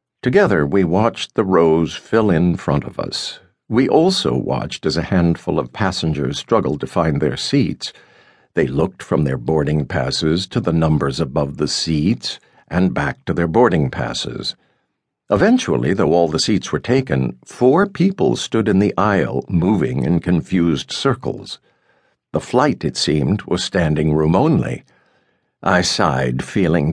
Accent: American